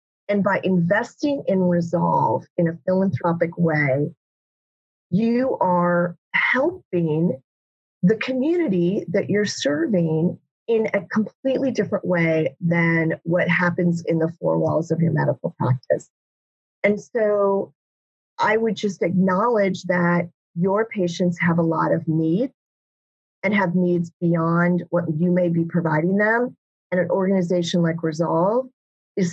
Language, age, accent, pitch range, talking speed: English, 30-49, American, 165-195 Hz, 130 wpm